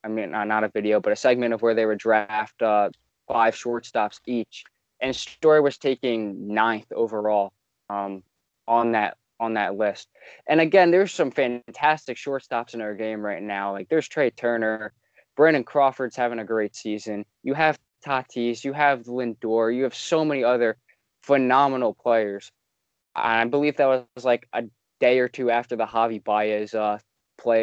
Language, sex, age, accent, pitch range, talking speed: English, male, 20-39, American, 110-140 Hz, 175 wpm